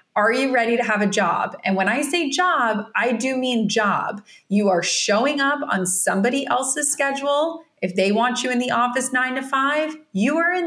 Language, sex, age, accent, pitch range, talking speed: English, female, 30-49, American, 195-260 Hz, 210 wpm